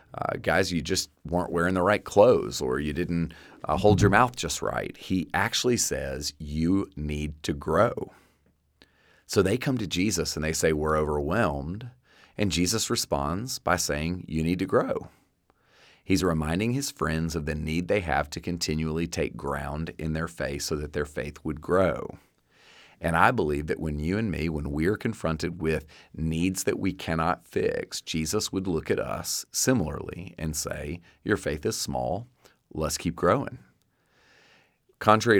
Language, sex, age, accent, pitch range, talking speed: English, male, 40-59, American, 75-95 Hz, 170 wpm